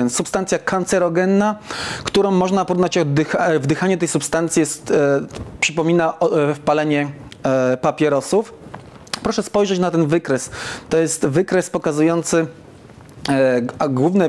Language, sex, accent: Polish, male, native